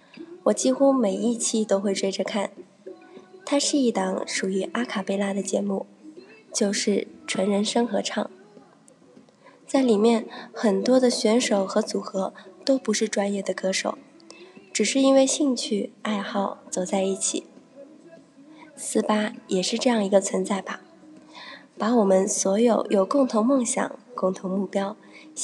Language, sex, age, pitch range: Chinese, female, 20-39, 200-265 Hz